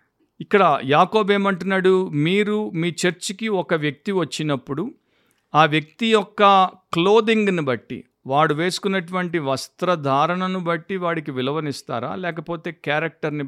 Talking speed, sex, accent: 95 wpm, male, native